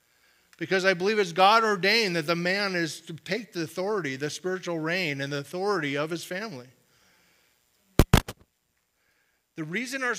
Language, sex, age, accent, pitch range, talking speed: English, male, 50-69, American, 145-195 Hz, 145 wpm